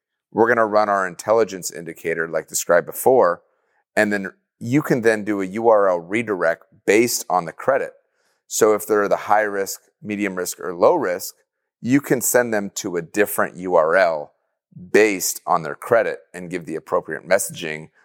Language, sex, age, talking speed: English, male, 30-49, 170 wpm